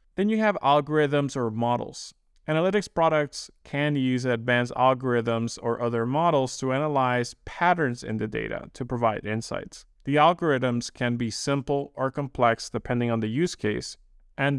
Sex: male